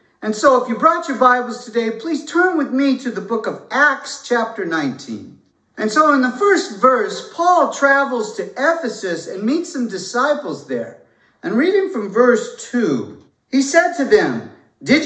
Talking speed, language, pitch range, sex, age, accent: 175 wpm, English, 220-285 Hz, male, 50-69, American